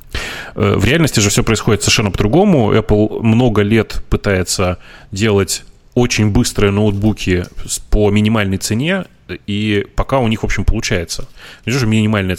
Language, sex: Russian, male